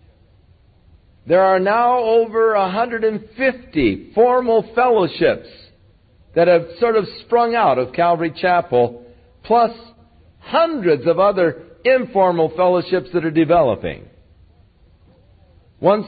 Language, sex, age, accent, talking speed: English, male, 50-69, American, 95 wpm